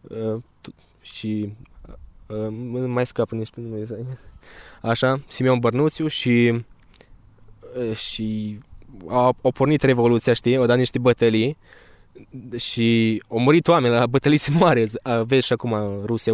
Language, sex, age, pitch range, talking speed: Romanian, male, 20-39, 110-125 Hz, 135 wpm